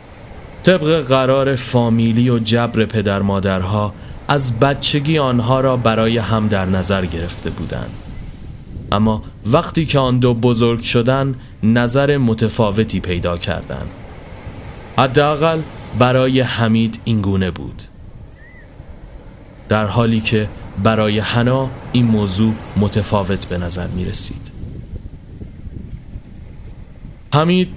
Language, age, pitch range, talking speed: Persian, 30-49, 105-130 Hz, 100 wpm